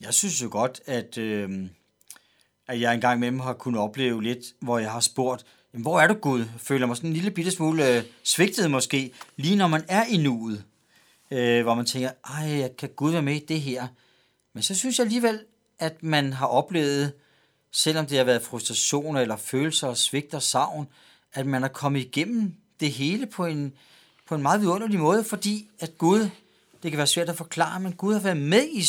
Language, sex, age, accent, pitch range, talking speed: Danish, male, 40-59, native, 125-165 Hz, 205 wpm